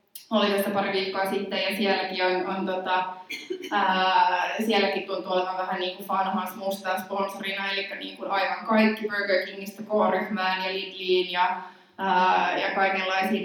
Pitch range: 180-200 Hz